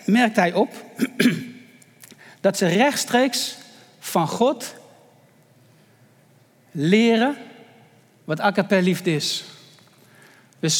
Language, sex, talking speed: Dutch, male, 80 wpm